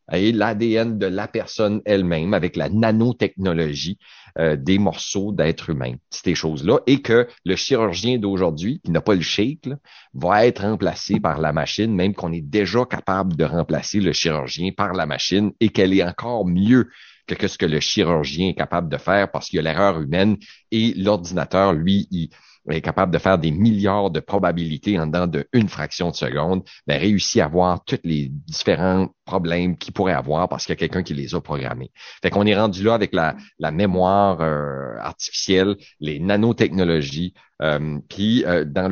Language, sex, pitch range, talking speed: French, male, 80-100 Hz, 185 wpm